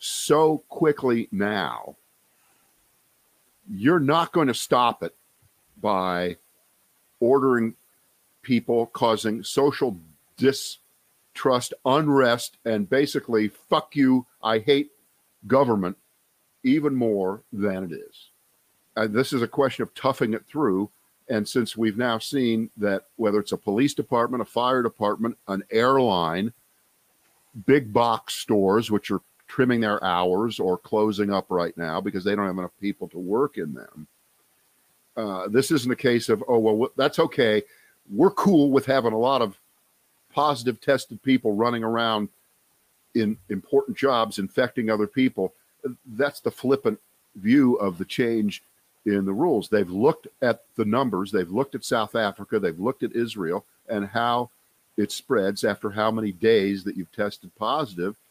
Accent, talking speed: American, 145 wpm